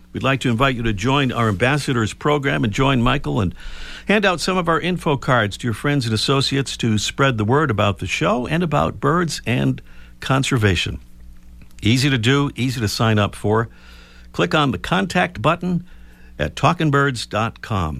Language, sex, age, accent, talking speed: English, male, 50-69, American, 175 wpm